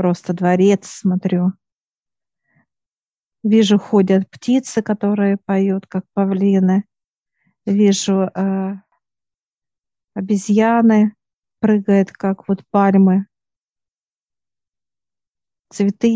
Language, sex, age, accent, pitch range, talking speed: Russian, female, 50-69, native, 190-210 Hz, 65 wpm